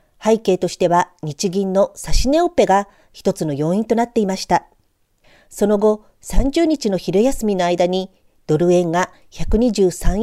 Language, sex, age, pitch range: Japanese, female, 40-59, 175-225 Hz